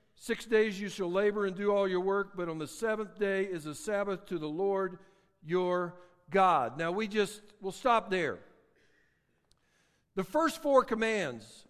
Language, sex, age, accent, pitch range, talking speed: English, male, 60-79, American, 190-265 Hz, 170 wpm